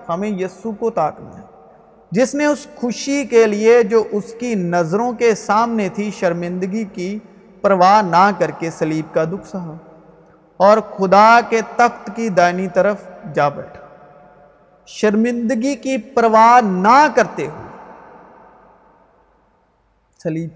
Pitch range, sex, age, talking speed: 175-215 Hz, male, 50-69, 125 wpm